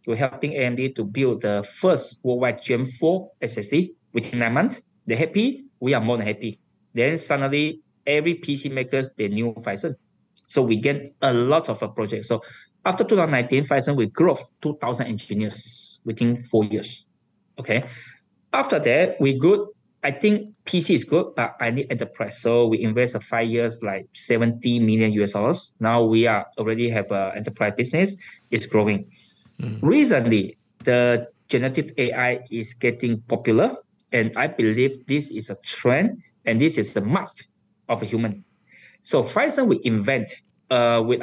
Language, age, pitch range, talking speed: English, 20-39, 115-145 Hz, 160 wpm